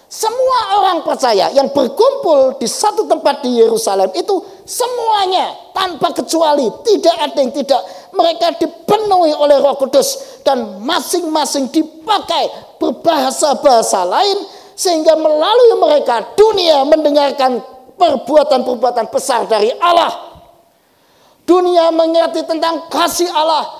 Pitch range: 255-360 Hz